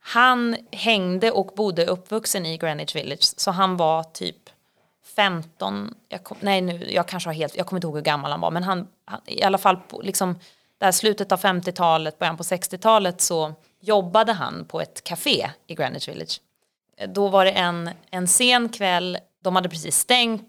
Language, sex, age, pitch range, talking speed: Swedish, female, 30-49, 165-195 Hz, 185 wpm